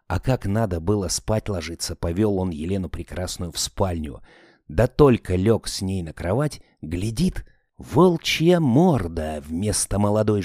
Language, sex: Russian, male